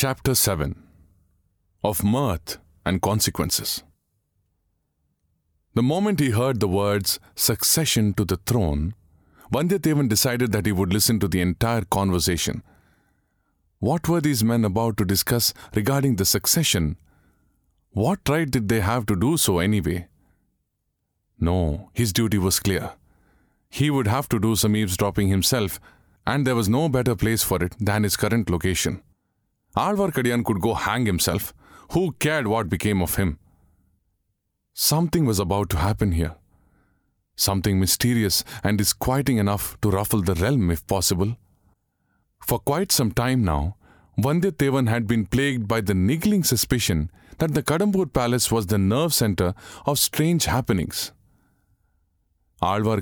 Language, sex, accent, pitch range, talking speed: English, male, Indian, 95-120 Hz, 140 wpm